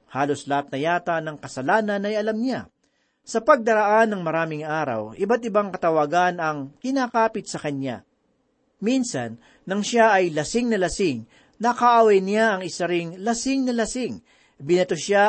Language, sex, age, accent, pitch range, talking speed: Filipino, male, 40-59, native, 165-225 Hz, 145 wpm